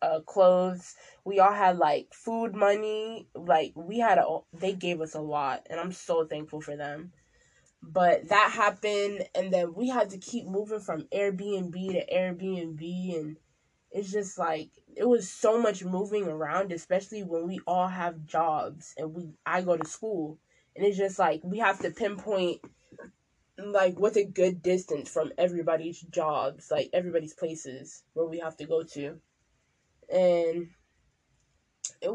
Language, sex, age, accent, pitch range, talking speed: English, female, 20-39, American, 165-205 Hz, 160 wpm